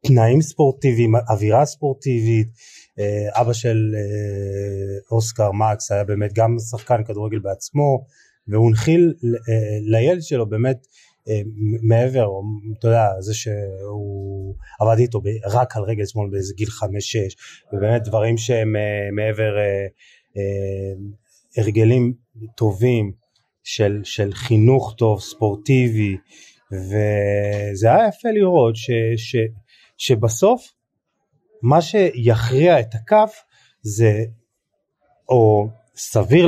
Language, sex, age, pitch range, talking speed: Hebrew, male, 30-49, 105-135 Hz, 100 wpm